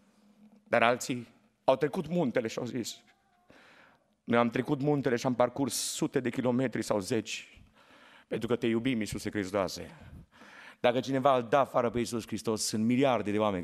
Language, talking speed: Romanian, 165 wpm